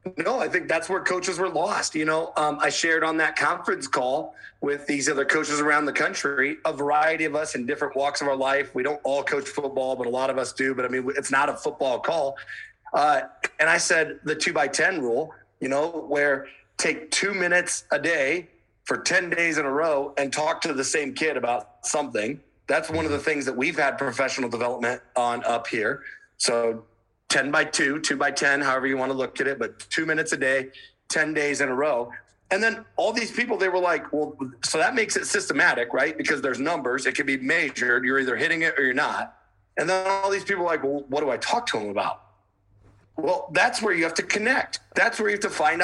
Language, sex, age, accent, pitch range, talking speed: English, male, 30-49, American, 130-160 Hz, 235 wpm